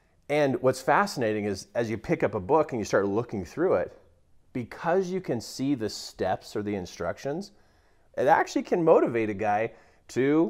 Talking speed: 185 wpm